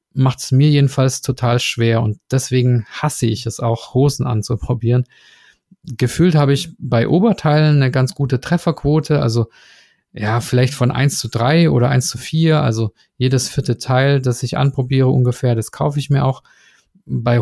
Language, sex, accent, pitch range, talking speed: German, male, German, 125-145 Hz, 165 wpm